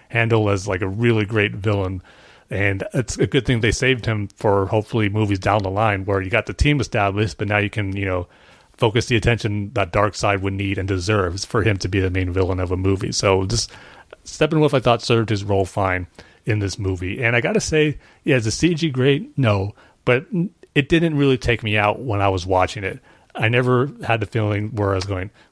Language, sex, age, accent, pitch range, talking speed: English, male, 30-49, American, 100-120 Hz, 225 wpm